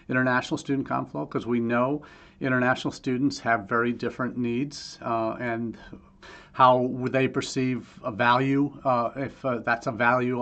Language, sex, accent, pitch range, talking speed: English, male, American, 115-135 Hz, 150 wpm